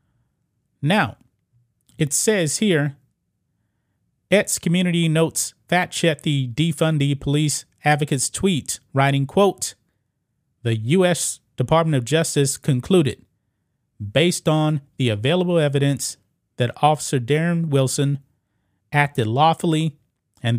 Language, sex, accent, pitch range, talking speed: English, male, American, 125-155 Hz, 100 wpm